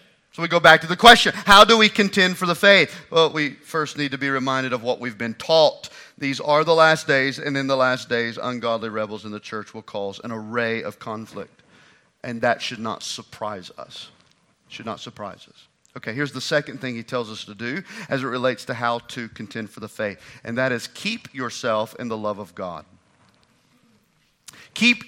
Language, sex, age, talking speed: English, male, 40-59, 210 wpm